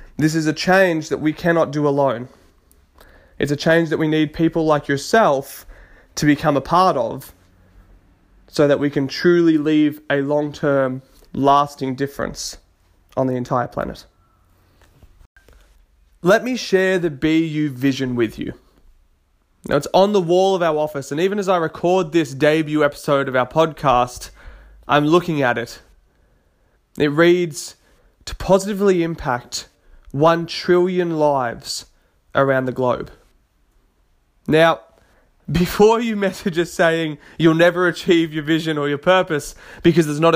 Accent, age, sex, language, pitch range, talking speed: Australian, 20-39, male, English, 130-170 Hz, 145 wpm